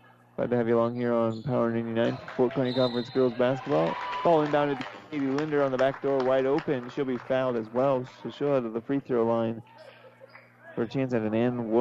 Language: English